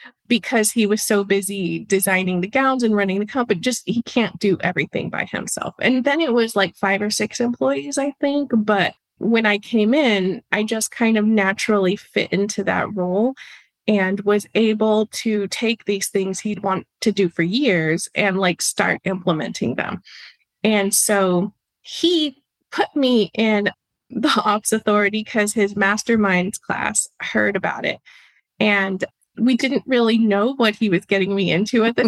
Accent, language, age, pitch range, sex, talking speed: American, English, 20-39, 195-240 Hz, female, 170 wpm